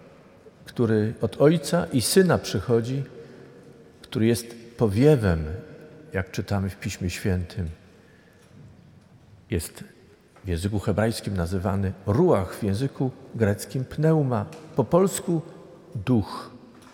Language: Polish